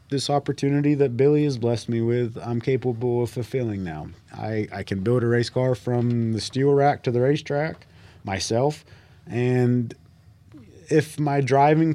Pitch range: 120-150 Hz